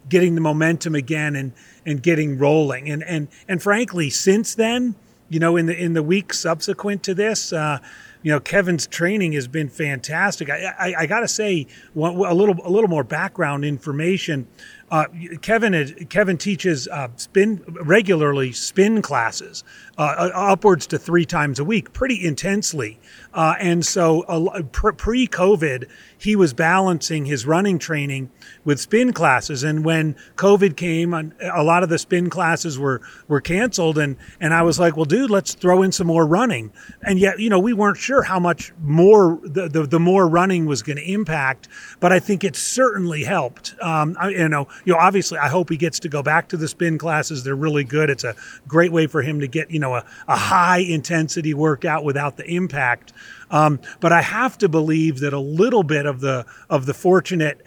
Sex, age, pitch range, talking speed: male, 40-59, 150-185 Hz, 190 wpm